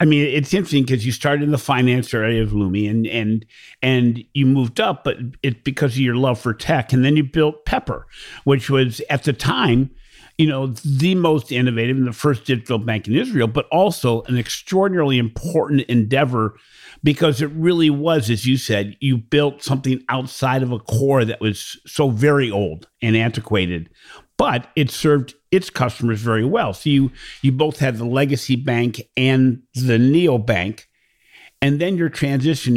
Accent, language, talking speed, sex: American, English, 180 wpm, male